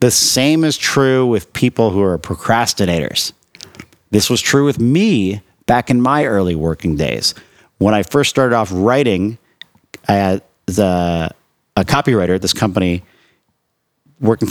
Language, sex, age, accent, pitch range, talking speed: English, male, 50-69, American, 100-130 Hz, 145 wpm